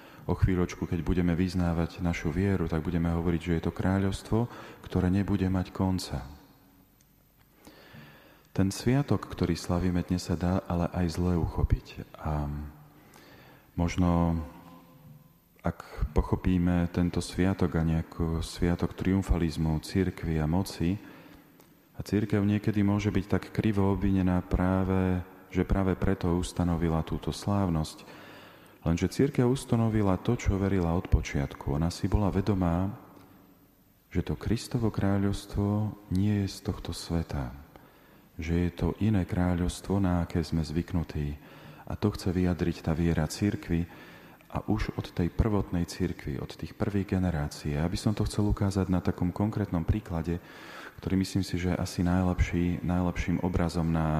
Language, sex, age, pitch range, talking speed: Slovak, male, 40-59, 85-95 Hz, 135 wpm